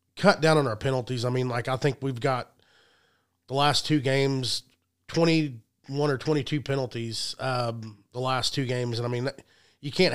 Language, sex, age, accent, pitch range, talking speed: English, male, 30-49, American, 120-150 Hz, 190 wpm